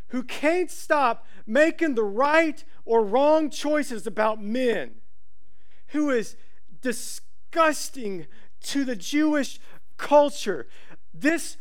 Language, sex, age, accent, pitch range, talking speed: English, male, 40-59, American, 225-310 Hz, 100 wpm